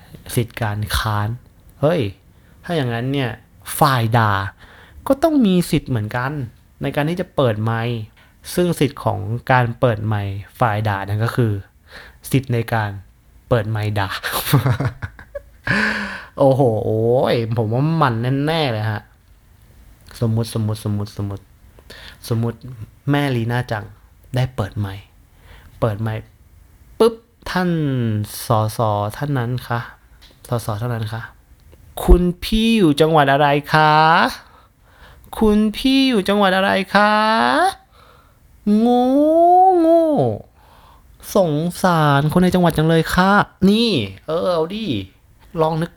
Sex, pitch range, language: male, 105-160 Hz, Thai